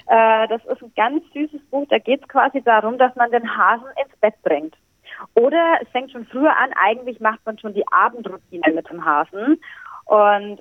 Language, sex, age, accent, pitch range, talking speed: German, female, 30-49, German, 205-270 Hz, 190 wpm